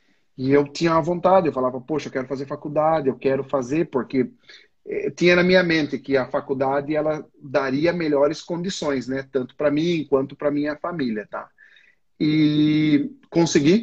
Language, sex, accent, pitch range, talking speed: Portuguese, male, Brazilian, 135-175 Hz, 165 wpm